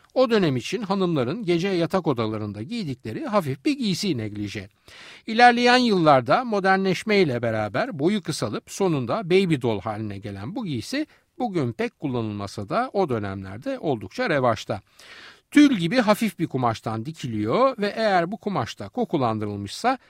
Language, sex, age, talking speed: Turkish, male, 60-79, 135 wpm